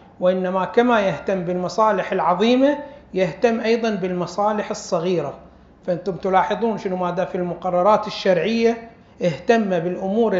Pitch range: 185-225 Hz